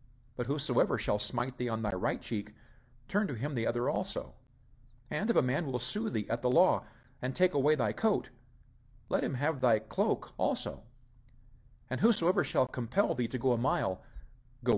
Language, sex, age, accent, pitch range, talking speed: English, male, 50-69, American, 115-135 Hz, 185 wpm